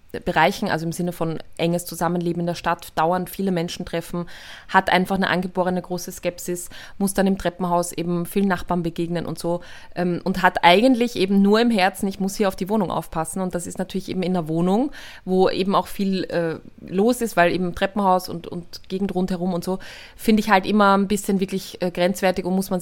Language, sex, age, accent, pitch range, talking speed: German, female, 20-39, German, 175-200 Hz, 215 wpm